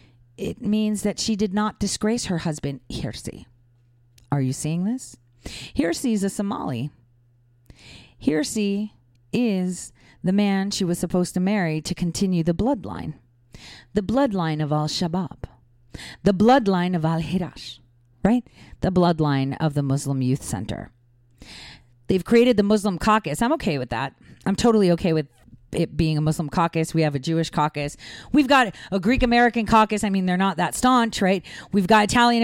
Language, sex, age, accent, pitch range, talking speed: English, female, 40-59, American, 155-220 Hz, 160 wpm